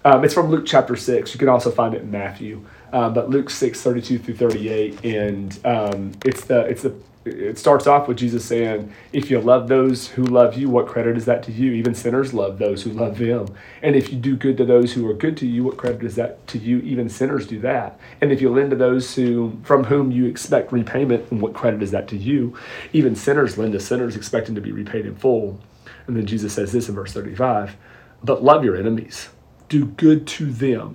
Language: English